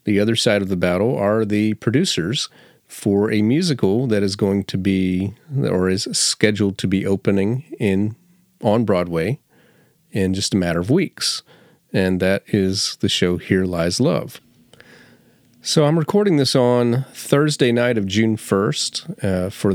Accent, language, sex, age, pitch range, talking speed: American, English, male, 40-59, 100-120 Hz, 160 wpm